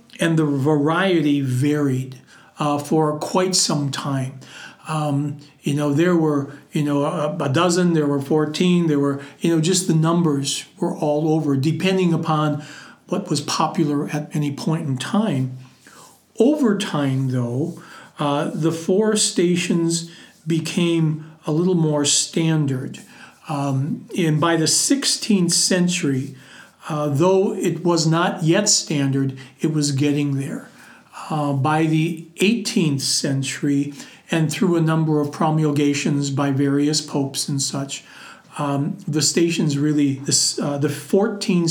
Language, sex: English, male